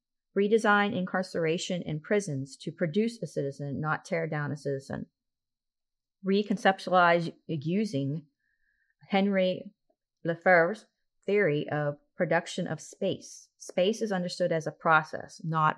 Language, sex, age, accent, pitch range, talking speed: English, female, 30-49, American, 155-195 Hz, 110 wpm